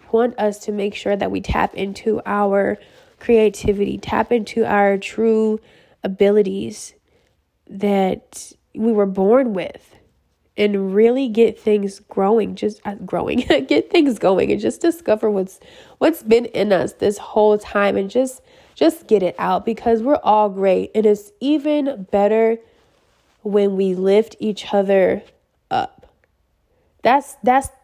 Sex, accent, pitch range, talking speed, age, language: female, American, 200-240 Hz, 140 wpm, 20-39, English